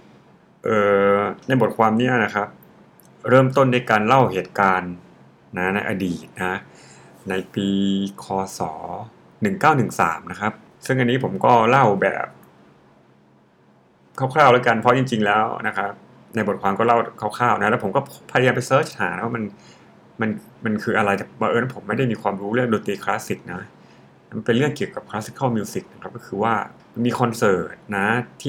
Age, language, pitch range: 60-79, Thai, 95-115 Hz